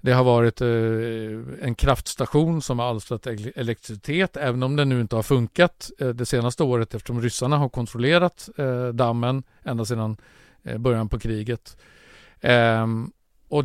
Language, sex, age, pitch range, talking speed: Swedish, male, 50-69, 115-135 Hz, 130 wpm